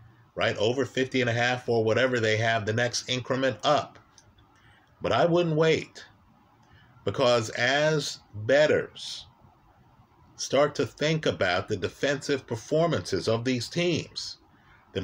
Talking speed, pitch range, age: 115 wpm, 115-155 Hz, 50-69